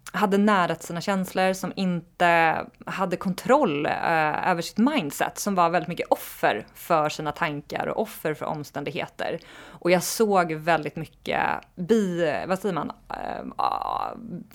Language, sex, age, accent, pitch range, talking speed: Swedish, female, 20-39, native, 155-195 Hz, 140 wpm